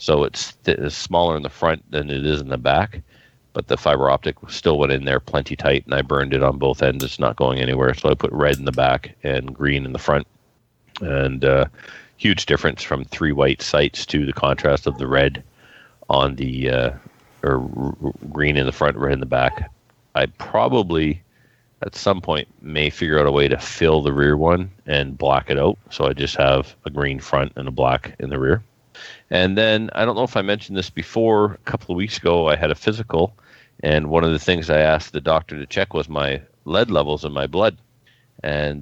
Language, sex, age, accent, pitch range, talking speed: English, male, 40-59, American, 70-80 Hz, 220 wpm